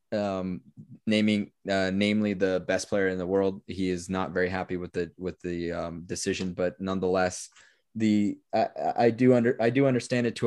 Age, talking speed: 20-39, 190 wpm